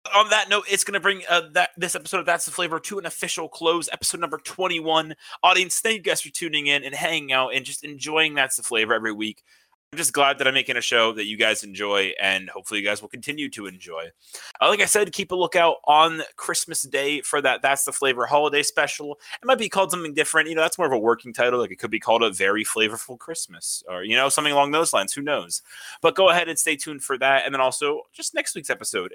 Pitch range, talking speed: 130-180 Hz, 255 wpm